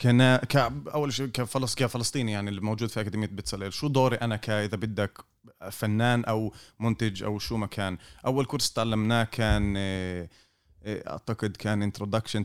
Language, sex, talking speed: Arabic, male, 145 wpm